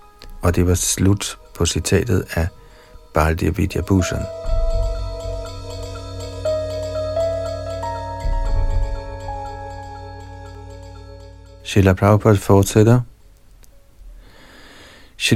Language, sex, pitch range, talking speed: Danish, male, 90-110 Hz, 40 wpm